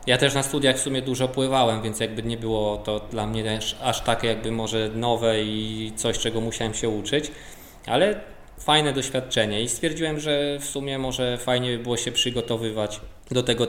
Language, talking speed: Polish, 190 wpm